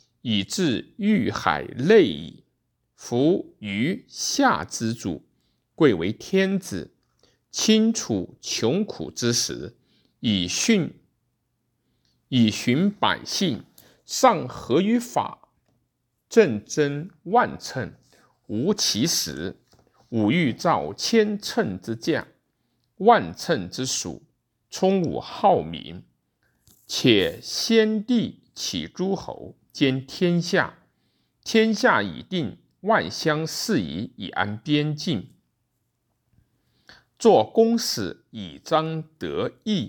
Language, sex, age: Chinese, male, 50-69